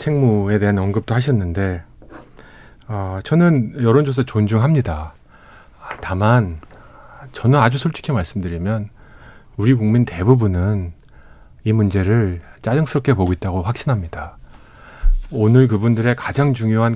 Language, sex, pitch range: Korean, male, 100-130 Hz